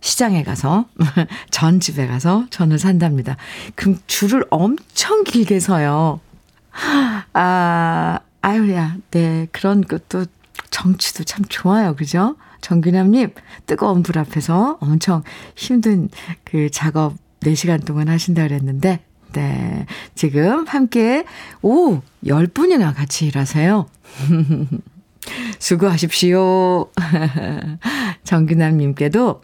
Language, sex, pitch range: Korean, female, 155-210 Hz